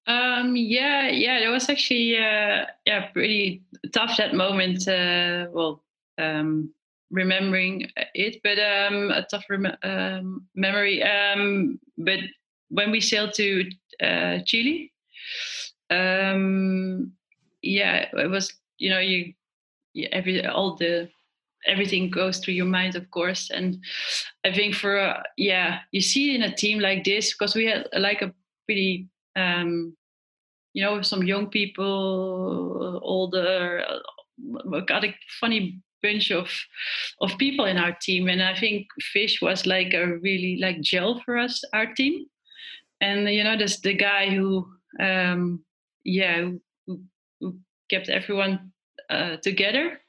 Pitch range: 185-215 Hz